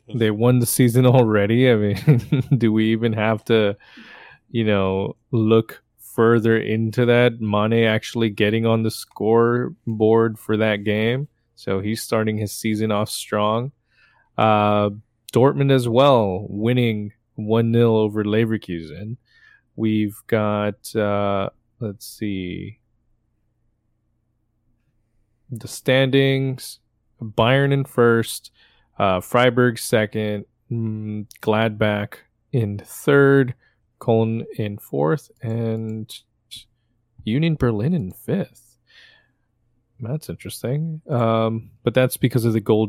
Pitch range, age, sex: 110-120 Hz, 20-39, male